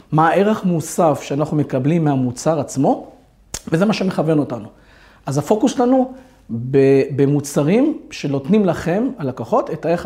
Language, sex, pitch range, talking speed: Hebrew, male, 145-195 Hz, 120 wpm